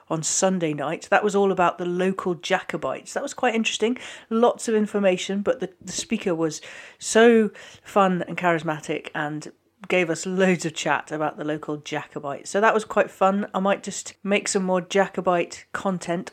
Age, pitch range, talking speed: 40-59, 160-200 Hz, 180 wpm